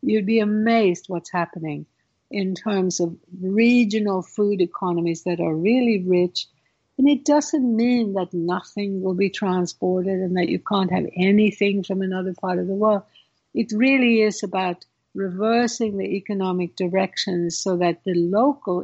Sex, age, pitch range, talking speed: female, 60-79, 180-225 Hz, 155 wpm